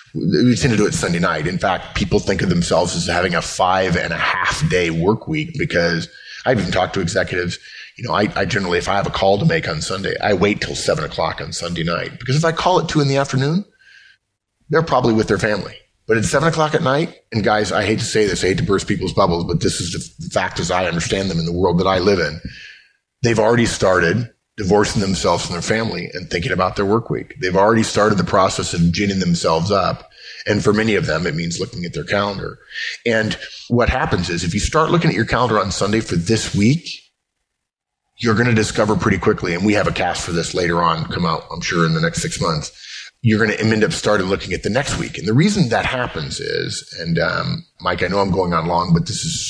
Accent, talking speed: American, 245 wpm